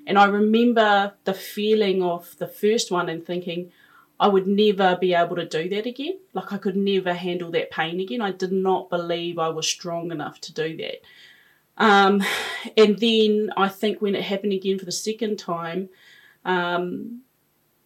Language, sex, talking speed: English, female, 180 wpm